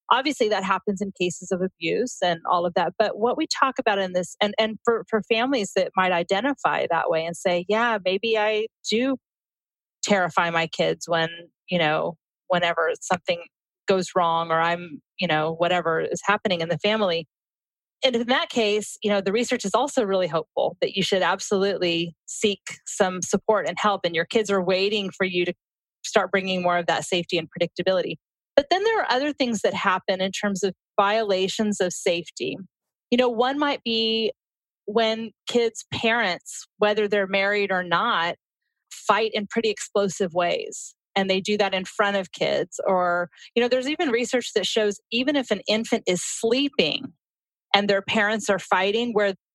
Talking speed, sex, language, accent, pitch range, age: 185 wpm, female, English, American, 180-225 Hz, 30-49